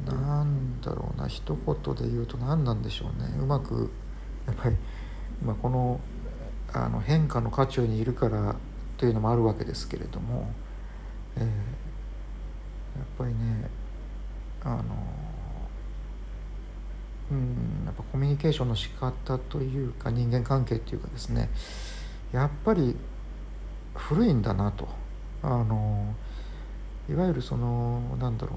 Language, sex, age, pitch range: Japanese, male, 50-69, 110-135 Hz